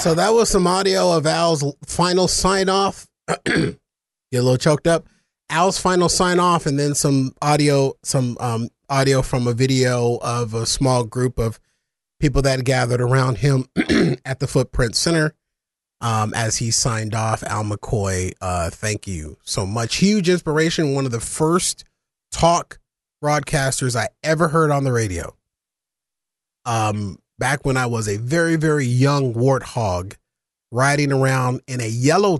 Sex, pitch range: male, 115-145 Hz